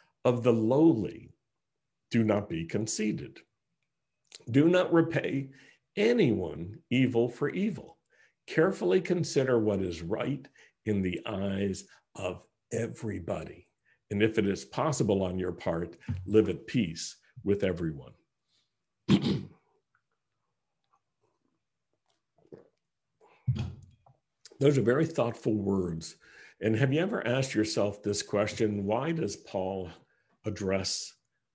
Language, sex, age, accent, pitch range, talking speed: English, male, 60-79, American, 100-130 Hz, 105 wpm